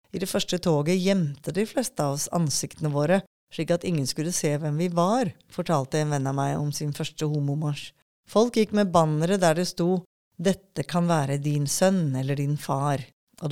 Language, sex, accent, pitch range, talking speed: English, female, Swedish, 155-195 Hz, 185 wpm